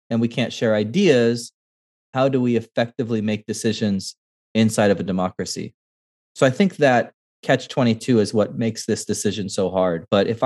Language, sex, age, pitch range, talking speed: English, male, 20-39, 100-120 Hz, 165 wpm